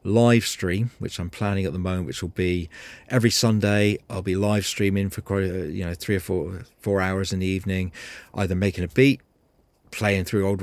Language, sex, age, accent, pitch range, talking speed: English, male, 40-59, British, 95-120 Hz, 205 wpm